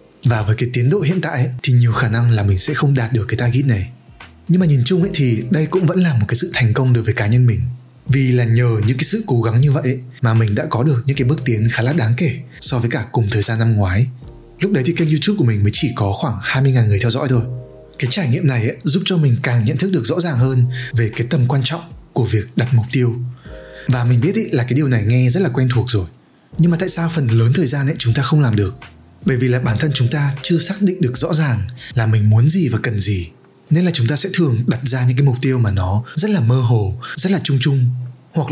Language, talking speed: Vietnamese, 290 wpm